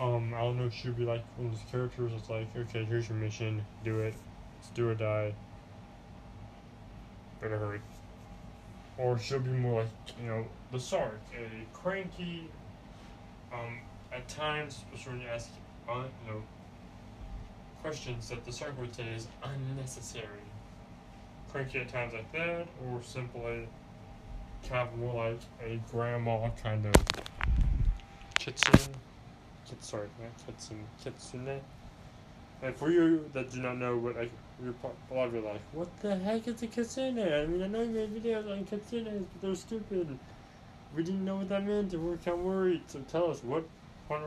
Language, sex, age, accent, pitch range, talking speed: English, male, 20-39, American, 115-155 Hz, 170 wpm